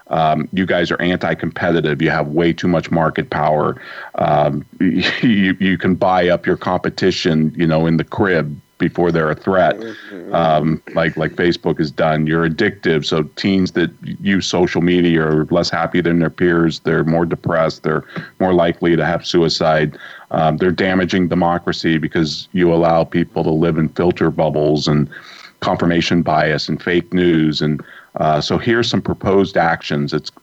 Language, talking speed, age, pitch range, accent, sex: English, 170 wpm, 40-59, 80-100 Hz, American, male